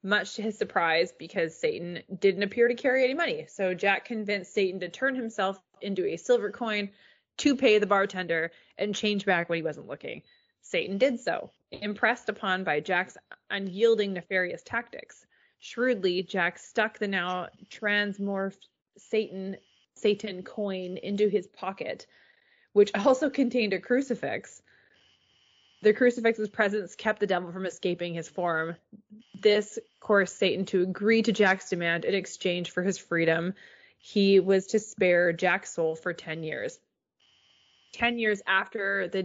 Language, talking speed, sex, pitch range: English, 150 wpm, female, 180-215 Hz